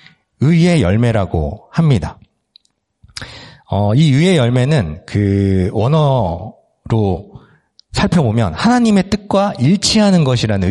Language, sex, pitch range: Korean, male, 110-165 Hz